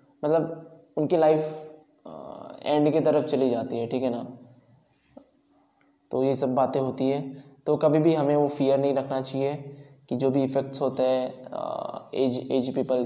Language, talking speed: Hindi, 165 wpm